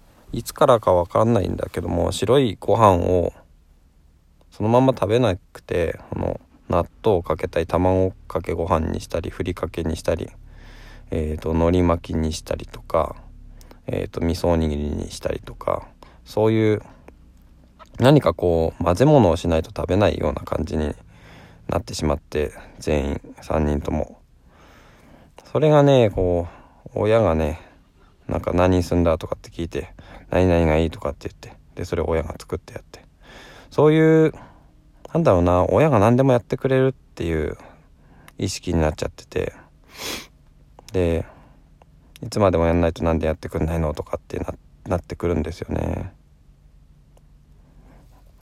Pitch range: 80-100 Hz